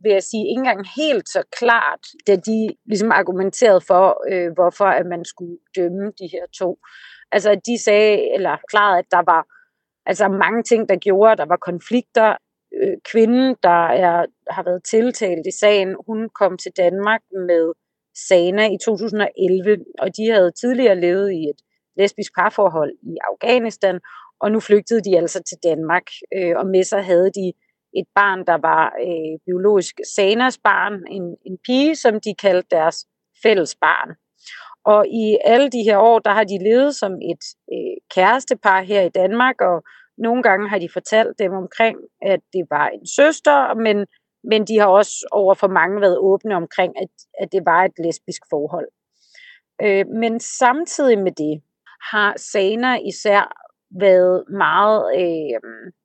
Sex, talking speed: female, 165 wpm